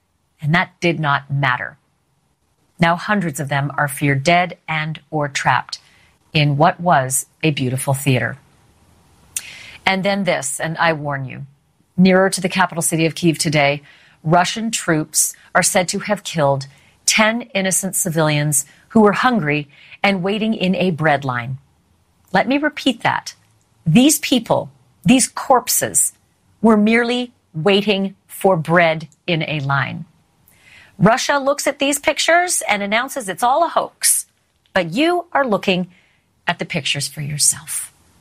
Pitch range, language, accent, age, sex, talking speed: 145-195 Hz, English, American, 40-59, female, 145 wpm